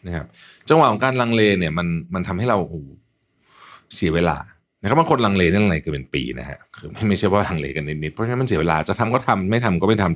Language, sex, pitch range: Thai, male, 85-125 Hz